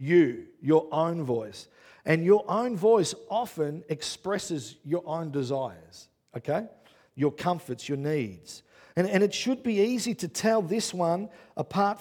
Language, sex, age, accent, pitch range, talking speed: English, male, 50-69, Australian, 135-175 Hz, 145 wpm